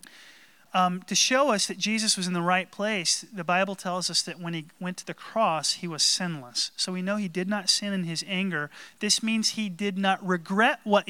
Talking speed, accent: 225 wpm, American